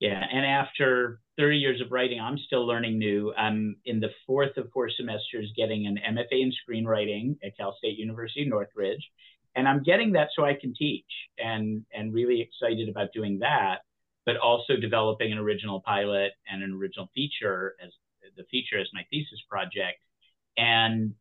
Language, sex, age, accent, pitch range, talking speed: English, male, 50-69, American, 100-125 Hz, 175 wpm